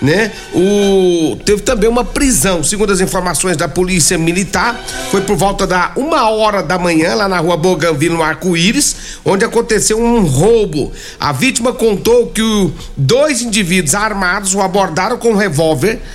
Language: Portuguese